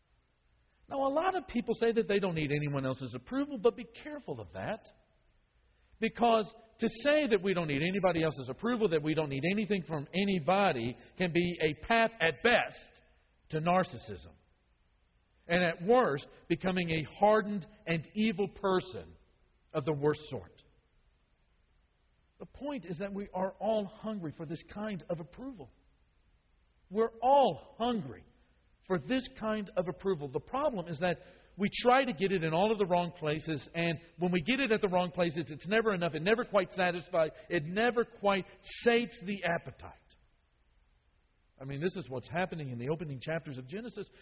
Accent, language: American, English